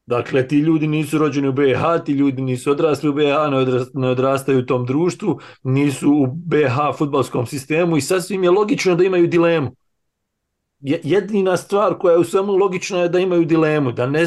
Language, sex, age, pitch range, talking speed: English, male, 40-59, 135-165 Hz, 180 wpm